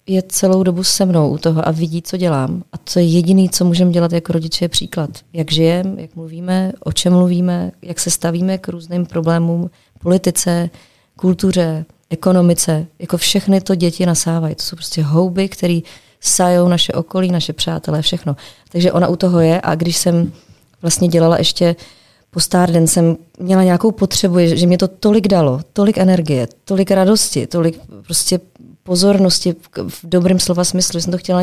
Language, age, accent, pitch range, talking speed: Czech, 30-49, native, 160-180 Hz, 180 wpm